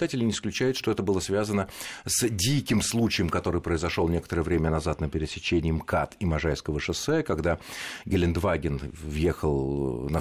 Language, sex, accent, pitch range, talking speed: Russian, male, native, 80-125 Hz, 140 wpm